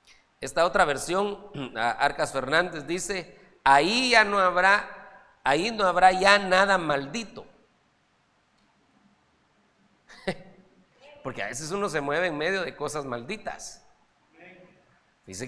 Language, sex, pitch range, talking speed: Spanish, male, 145-205 Hz, 110 wpm